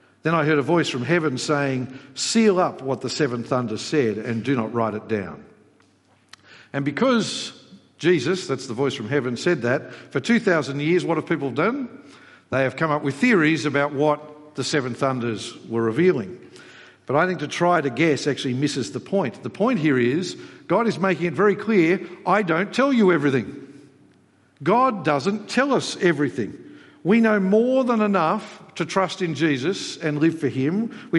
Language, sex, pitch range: English, male, 140-190 Hz